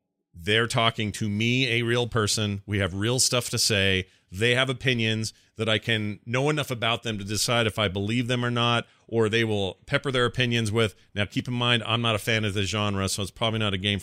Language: English